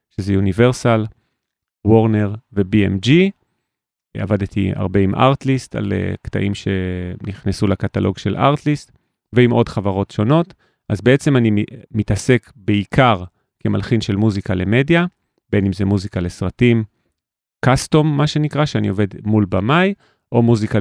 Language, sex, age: Hebrew, male, 30-49